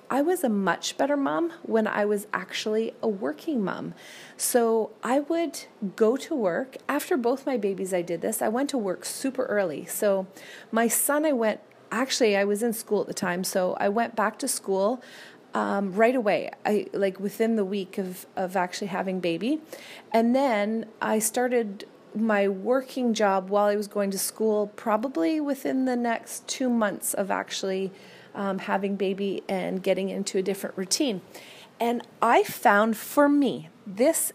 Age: 30-49